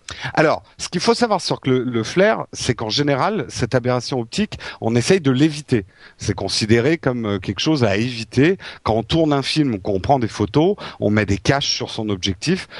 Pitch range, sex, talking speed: 115-160 Hz, male, 200 wpm